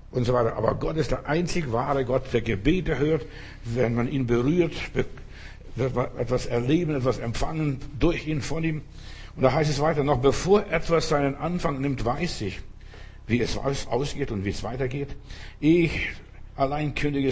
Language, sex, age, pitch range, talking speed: German, male, 60-79, 120-150 Hz, 175 wpm